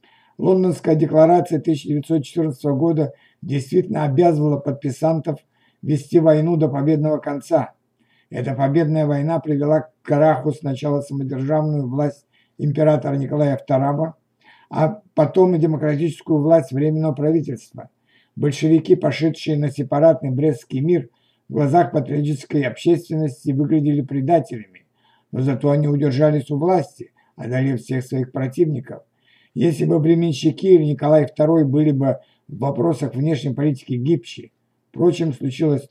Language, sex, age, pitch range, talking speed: Russian, male, 60-79, 140-160 Hz, 110 wpm